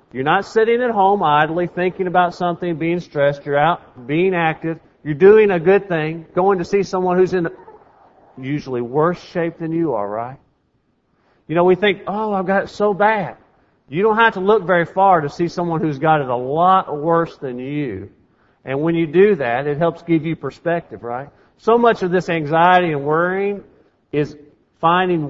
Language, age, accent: English, 40-59, American